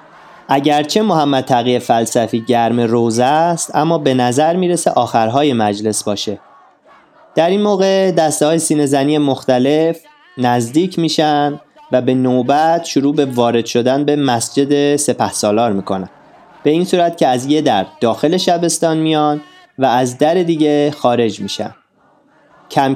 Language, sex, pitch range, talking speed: Persian, male, 125-165 Hz, 135 wpm